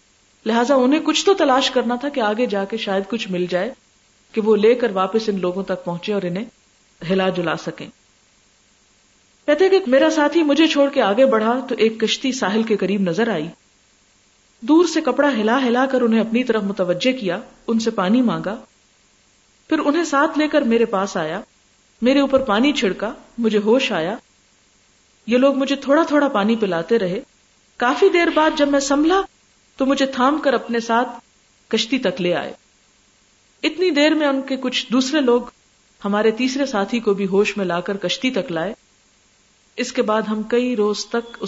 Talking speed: 185 wpm